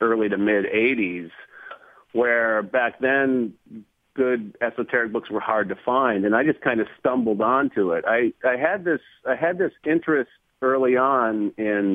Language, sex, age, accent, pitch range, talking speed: English, male, 40-59, American, 100-135 Hz, 165 wpm